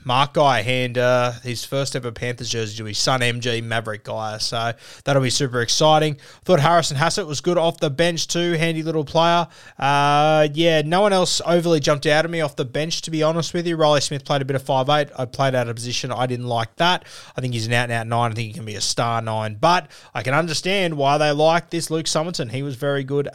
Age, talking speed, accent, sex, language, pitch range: 20-39, 245 wpm, Australian, male, English, 130-160 Hz